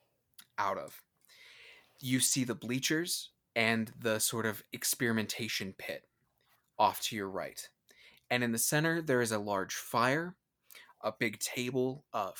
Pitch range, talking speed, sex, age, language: 110-130 Hz, 140 wpm, male, 20-39, English